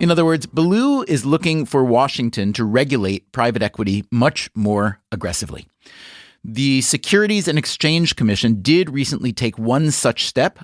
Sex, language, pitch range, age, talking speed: male, English, 110-155 Hz, 40-59, 145 wpm